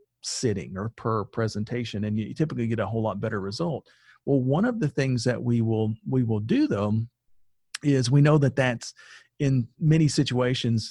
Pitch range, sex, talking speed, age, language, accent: 110-130 Hz, male, 180 wpm, 40-59, English, American